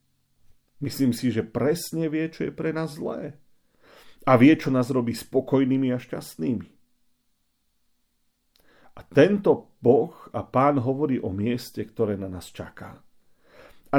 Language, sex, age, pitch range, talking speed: Slovak, male, 40-59, 105-140 Hz, 135 wpm